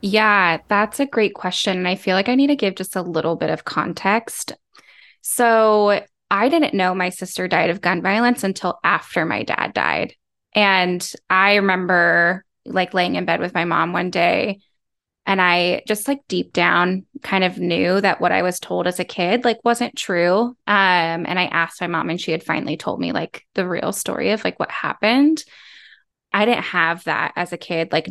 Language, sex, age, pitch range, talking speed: English, female, 10-29, 175-225 Hz, 200 wpm